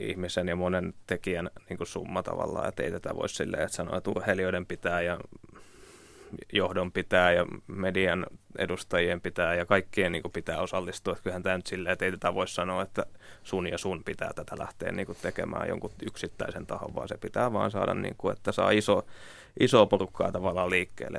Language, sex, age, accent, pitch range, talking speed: Finnish, male, 20-39, native, 90-100 Hz, 190 wpm